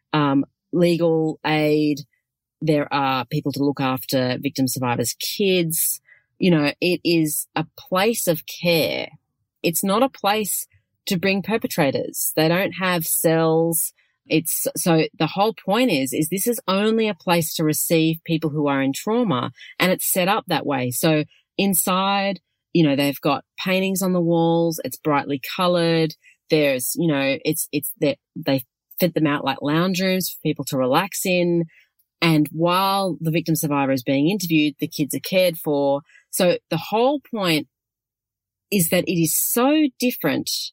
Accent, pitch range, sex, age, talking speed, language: Australian, 145-190 Hz, female, 30-49, 160 wpm, English